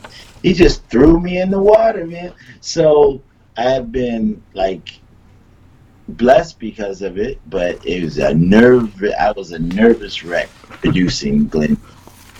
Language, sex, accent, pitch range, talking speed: English, male, American, 85-130 Hz, 135 wpm